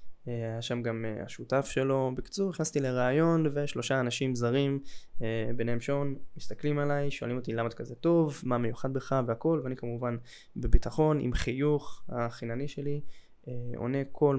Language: Hebrew